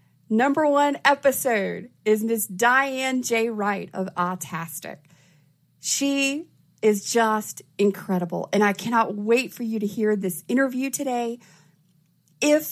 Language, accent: English, American